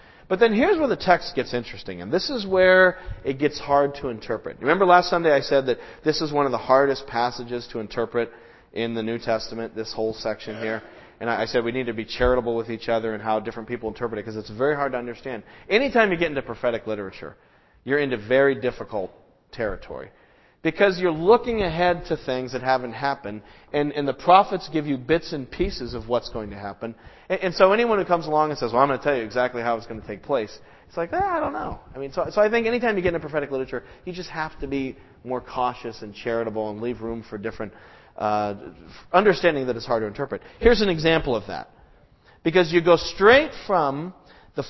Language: English